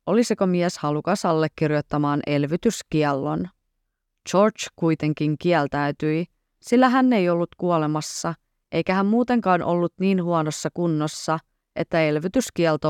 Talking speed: 100 wpm